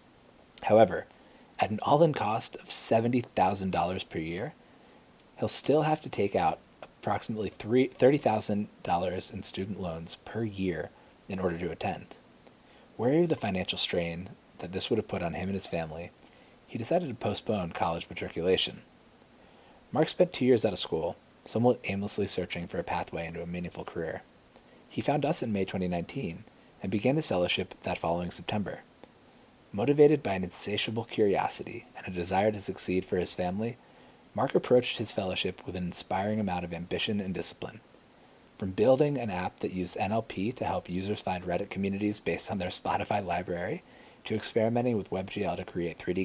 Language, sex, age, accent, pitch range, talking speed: English, male, 30-49, American, 90-110 Hz, 165 wpm